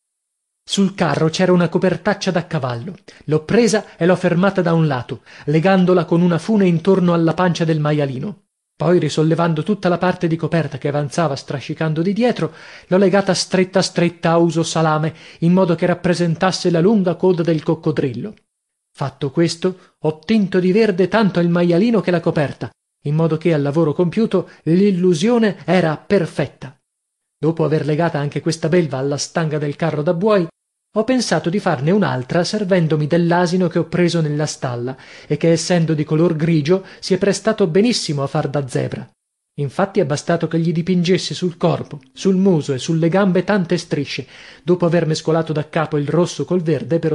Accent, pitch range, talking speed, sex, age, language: native, 155-185 Hz, 175 wpm, male, 30-49, Italian